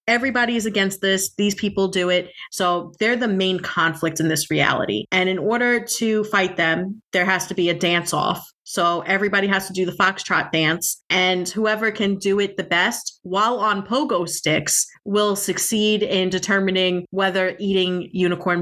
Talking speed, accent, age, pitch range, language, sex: 175 wpm, American, 30-49, 180-210 Hz, English, female